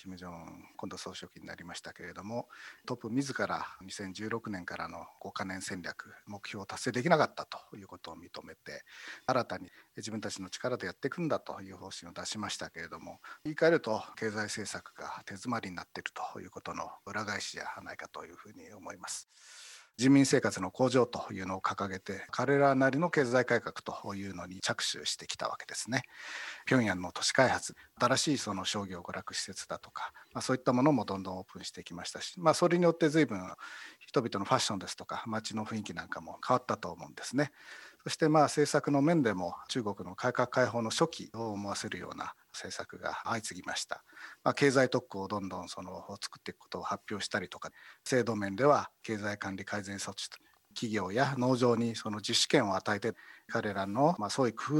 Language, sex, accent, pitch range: Japanese, male, native, 100-140 Hz